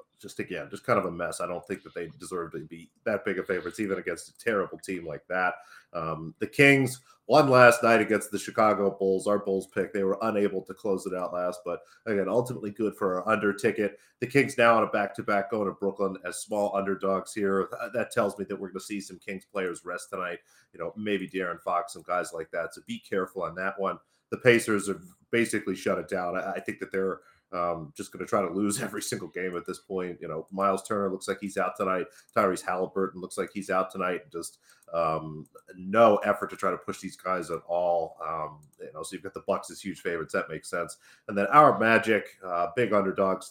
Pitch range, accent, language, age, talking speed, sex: 95-110 Hz, American, English, 40-59, 235 wpm, male